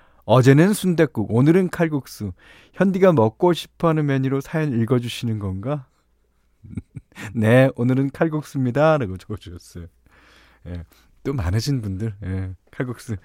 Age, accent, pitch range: 40-59, native, 95-160 Hz